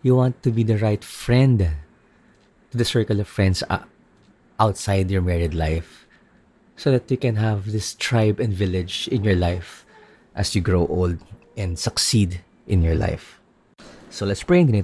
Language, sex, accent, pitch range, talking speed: Filipino, male, native, 95-120 Hz, 175 wpm